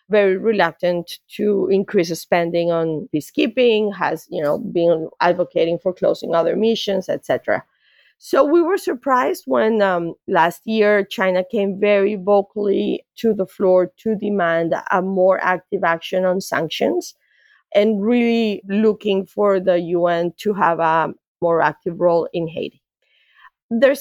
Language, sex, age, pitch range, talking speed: English, female, 30-49, 170-210 Hz, 135 wpm